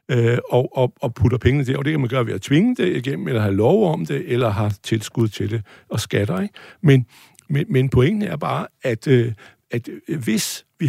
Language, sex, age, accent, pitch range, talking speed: Danish, male, 60-79, native, 125-180 Hz, 210 wpm